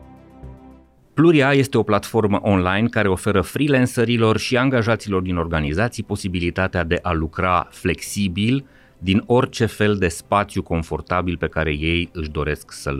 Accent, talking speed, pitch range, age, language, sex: native, 135 wpm, 85-110 Hz, 30-49, Romanian, male